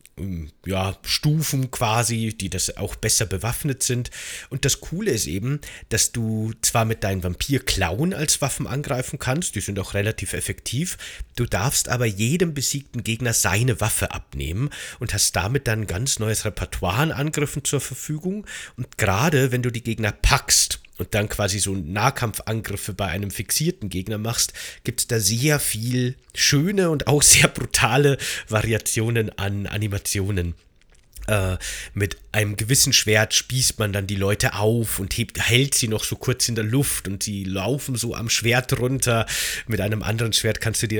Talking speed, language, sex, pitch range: 165 wpm, German, male, 100-125 Hz